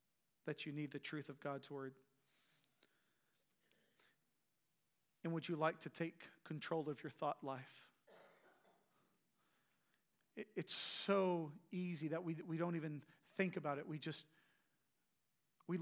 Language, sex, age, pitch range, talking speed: English, male, 40-59, 145-165 Hz, 130 wpm